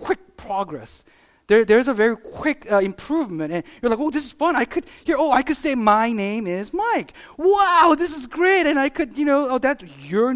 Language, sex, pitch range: English, male, 200-280 Hz